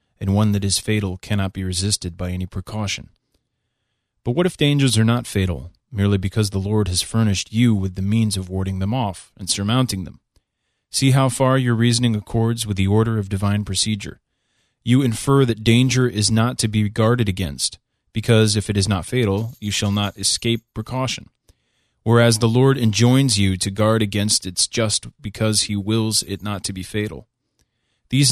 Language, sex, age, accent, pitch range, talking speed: English, male, 30-49, American, 100-115 Hz, 185 wpm